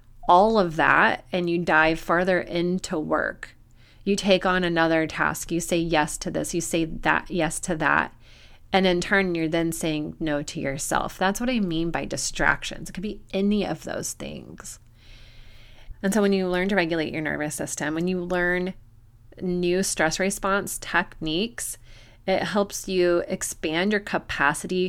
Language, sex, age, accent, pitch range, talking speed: English, female, 30-49, American, 150-190 Hz, 170 wpm